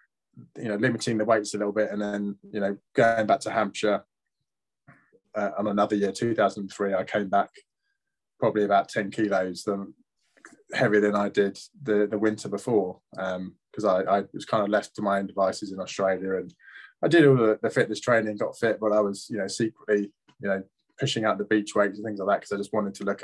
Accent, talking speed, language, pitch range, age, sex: British, 215 wpm, English, 100-110 Hz, 20-39, male